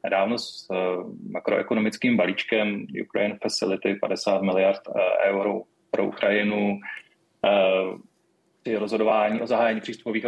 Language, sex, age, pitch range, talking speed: Czech, male, 30-49, 100-120 Hz, 110 wpm